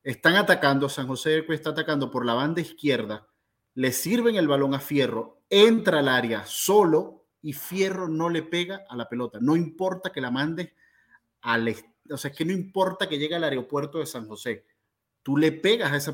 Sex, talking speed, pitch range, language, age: male, 195 wpm, 125-170 Hz, Spanish, 30-49